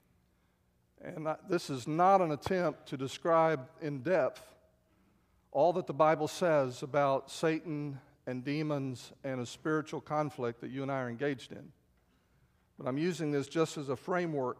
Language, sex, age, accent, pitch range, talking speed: English, male, 50-69, American, 125-155 Hz, 155 wpm